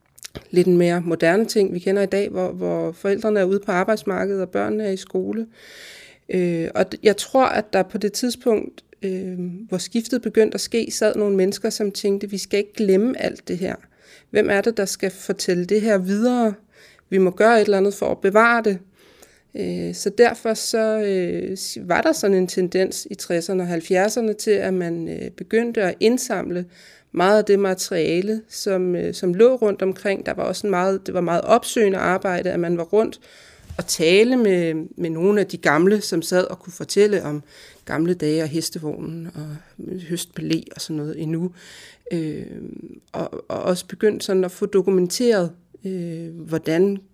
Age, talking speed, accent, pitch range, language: 30-49, 175 wpm, native, 175-210 Hz, Danish